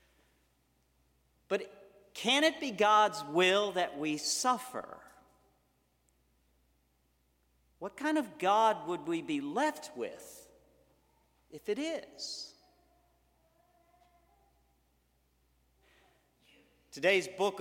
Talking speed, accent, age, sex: 80 wpm, American, 50-69, male